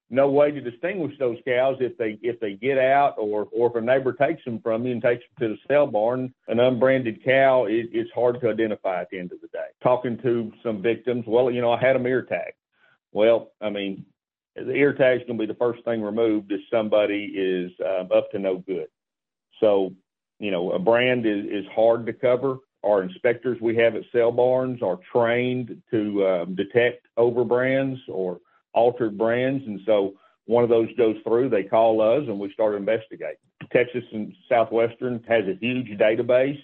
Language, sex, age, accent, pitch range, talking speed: English, male, 50-69, American, 110-125 Hz, 205 wpm